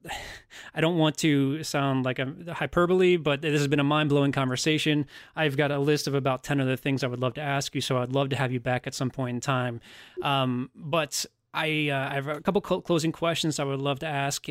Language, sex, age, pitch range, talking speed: English, male, 20-39, 130-155 Hz, 240 wpm